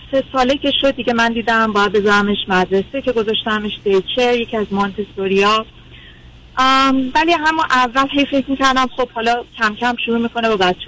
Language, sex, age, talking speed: Persian, female, 30-49, 160 wpm